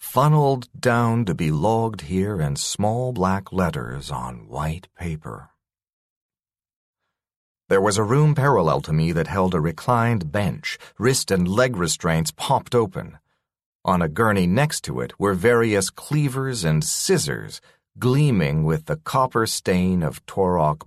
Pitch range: 90-135 Hz